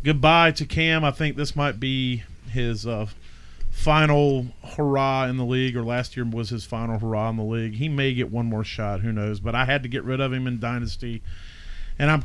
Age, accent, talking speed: 40-59, American, 220 wpm